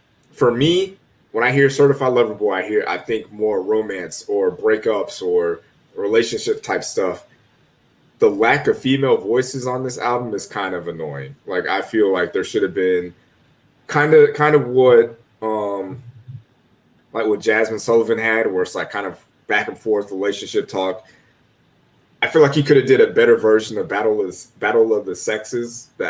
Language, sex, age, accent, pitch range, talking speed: English, male, 20-39, American, 115-190 Hz, 185 wpm